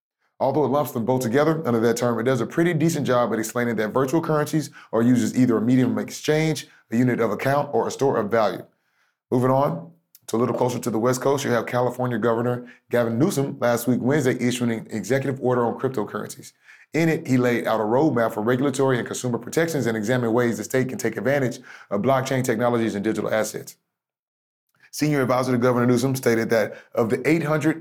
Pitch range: 115-135 Hz